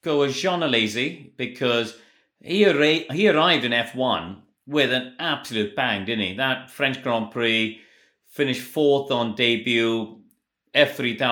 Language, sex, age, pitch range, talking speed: English, male, 30-49, 110-125 Hz, 140 wpm